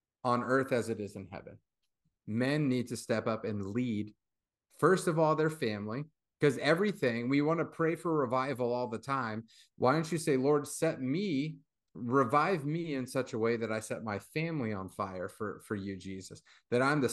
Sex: male